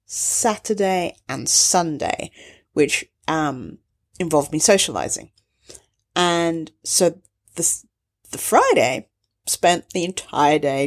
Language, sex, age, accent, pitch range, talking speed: English, female, 40-59, British, 165-220 Hz, 95 wpm